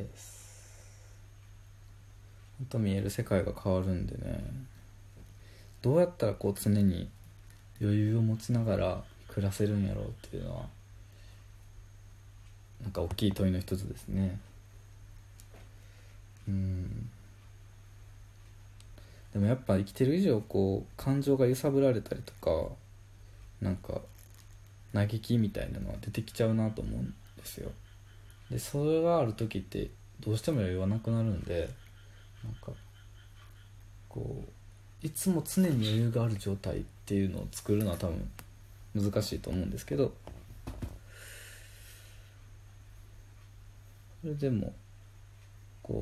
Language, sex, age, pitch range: Japanese, male, 20-39, 100-110 Hz